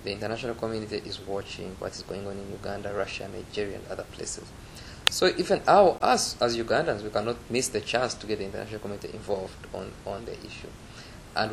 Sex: male